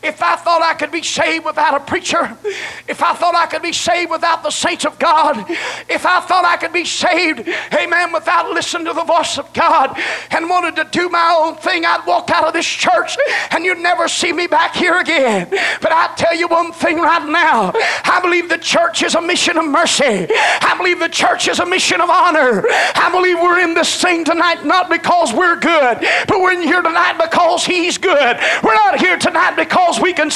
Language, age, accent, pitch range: English, 40-59, American, 325-365 Hz